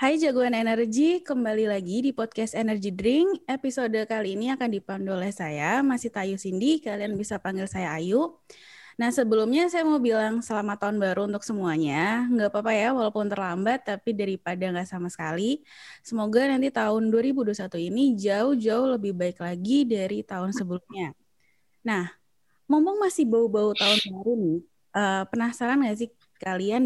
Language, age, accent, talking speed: Indonesian, 20-39, native, 150 wpm